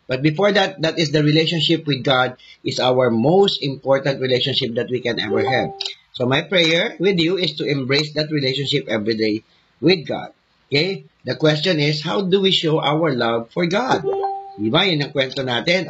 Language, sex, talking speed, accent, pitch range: English, male, 190 wpm, Filipino, 130-165 Hz